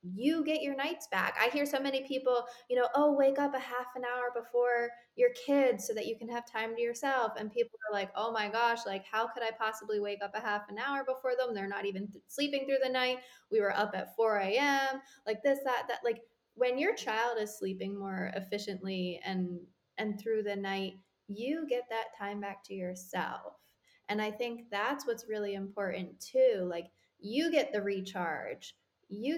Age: 20-39